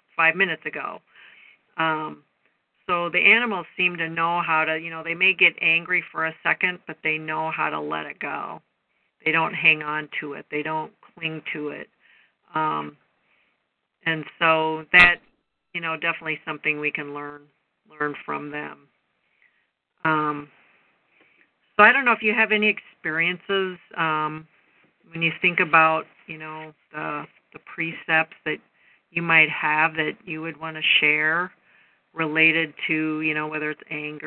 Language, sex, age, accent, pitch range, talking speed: English, female, 50-69, American, 150-165 Hz, 160 wpm